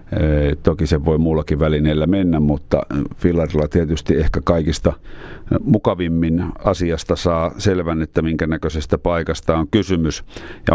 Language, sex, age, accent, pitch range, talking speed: Finnish, male, 50-69, native, 80-95 Hz, 125 wpm